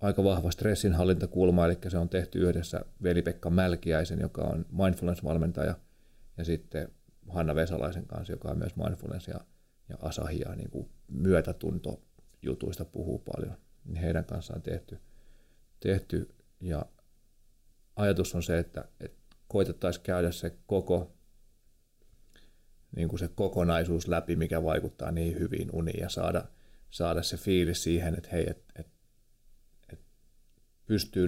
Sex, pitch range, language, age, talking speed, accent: male, 80-90 Hz, Finnish, 30-49, 125 wpm, native